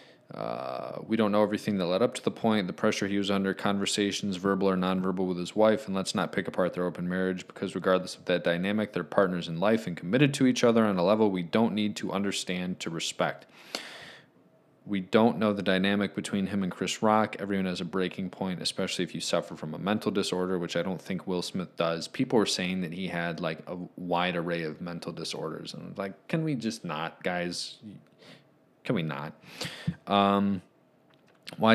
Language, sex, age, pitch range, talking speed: English, male, 20-39, 90-100 Hz, 210 wpm